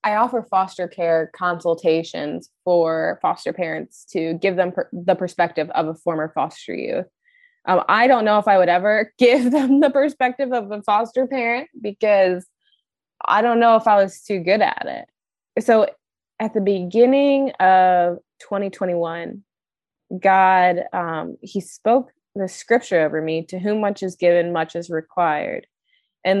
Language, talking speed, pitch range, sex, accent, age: English, 155 wpm, 175-220 Hz, female, American, 20-39